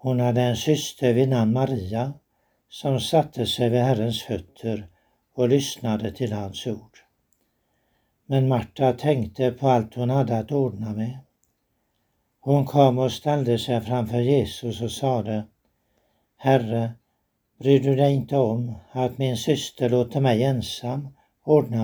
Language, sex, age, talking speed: Swedish, male, 60-79, 135 wpm